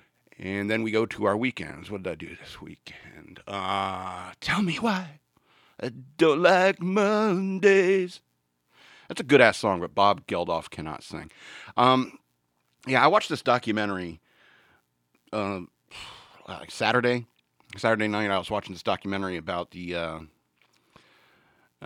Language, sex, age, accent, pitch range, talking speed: English, male, 40-59, American, 90-120 Hz, 140 wpm